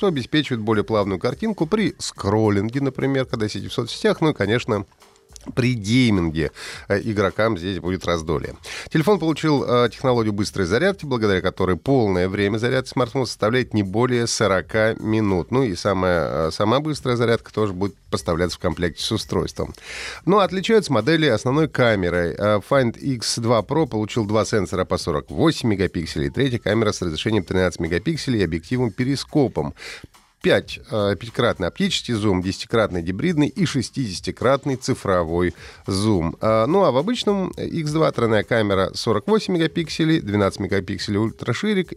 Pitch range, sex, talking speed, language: 95-135 Hz, male, 140 wpm, Russian